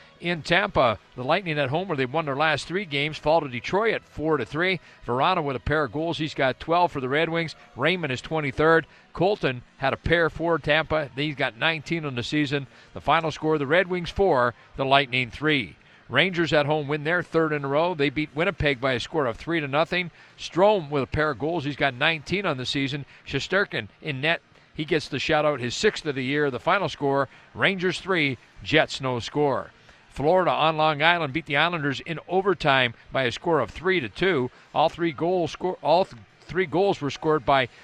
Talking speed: 215 wpm